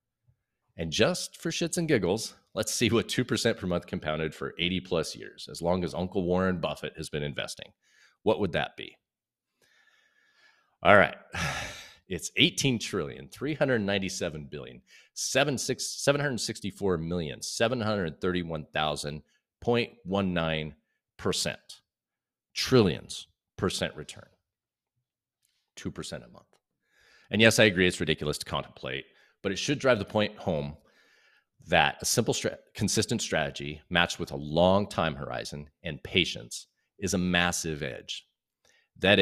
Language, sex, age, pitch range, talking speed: English, male, 40-59, 80-115 Hz, 110 wpm